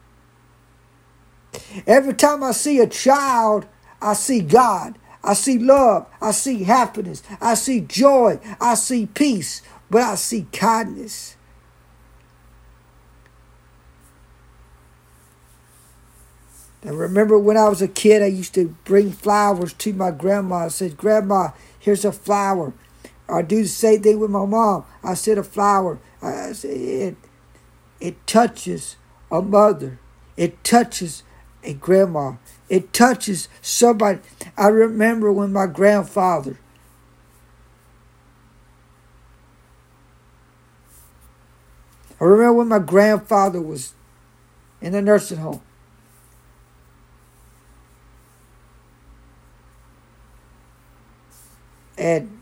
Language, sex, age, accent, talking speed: English, male, 60-79, American, 105 wpm